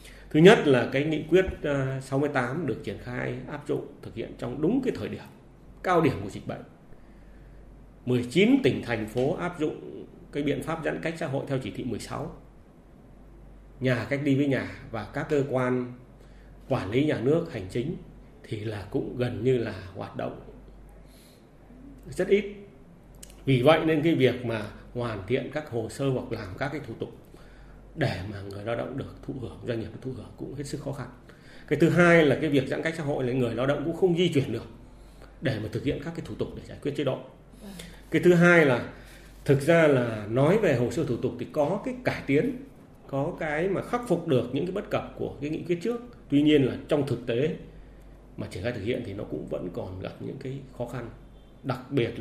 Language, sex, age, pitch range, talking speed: Vietnamese, male, 30-49, 120-150 Hz, 215 wpm